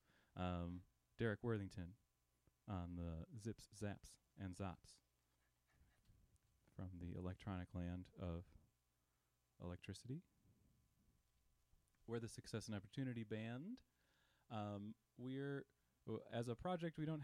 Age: 30-49